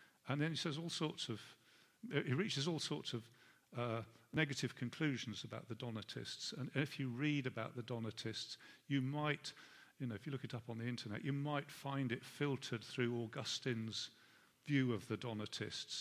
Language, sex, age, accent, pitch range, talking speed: English, male, 50-69, British, 115-145 Hz, 180 wpm